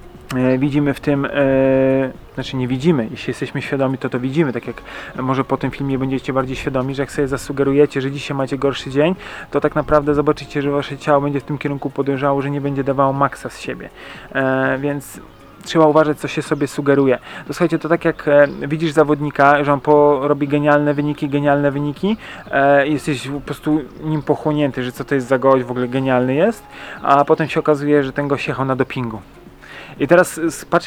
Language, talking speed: Polish, 195 wpm